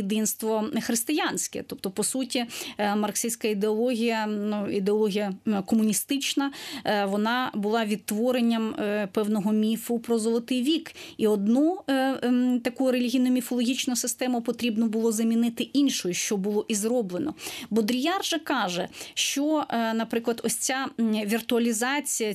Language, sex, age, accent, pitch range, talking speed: Ukrainian, female, 30-49, native, 210-245 Hz, 100 wpm